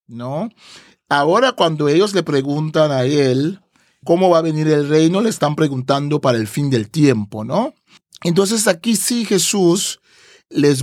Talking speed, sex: 155 wpm, male